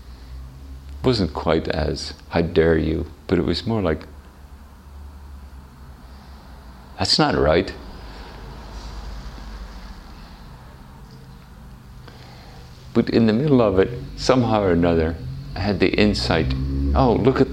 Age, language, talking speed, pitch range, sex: 50-69, English, 105 wpm, 70-90 Hz, male